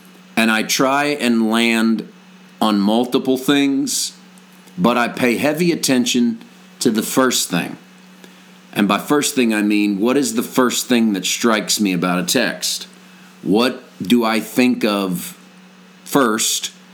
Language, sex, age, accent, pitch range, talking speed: English, male, 40-59, American, 105-155 Hz, 140 wpm